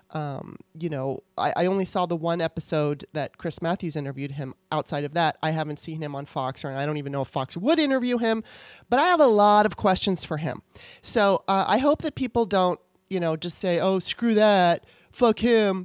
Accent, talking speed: American, 225 wpm